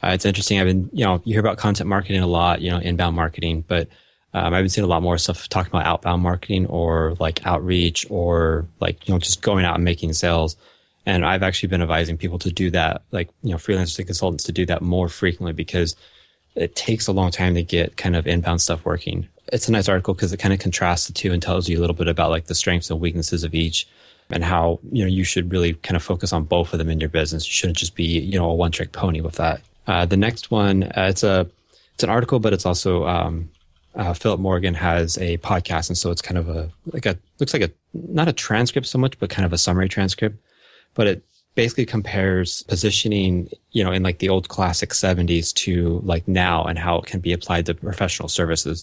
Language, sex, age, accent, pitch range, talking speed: English, male, 20-39, American, 85-95 Hz, 245 wpm